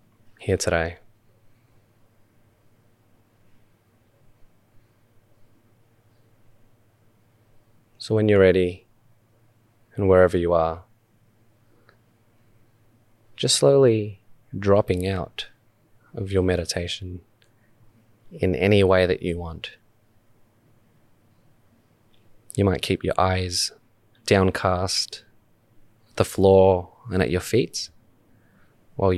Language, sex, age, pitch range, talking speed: English, male, 20-39, 95-115 Hz, 75 wpm